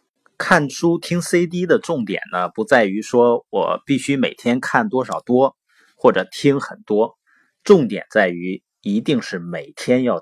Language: Chinese